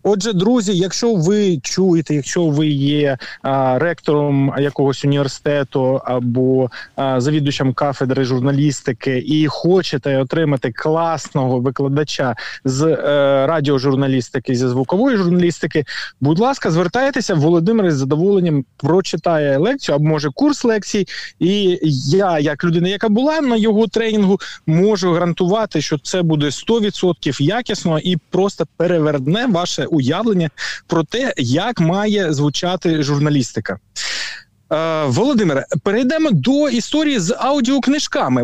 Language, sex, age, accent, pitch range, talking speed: Ukrainian, male, 20-39, native, 145-205 Hz, 110 wpm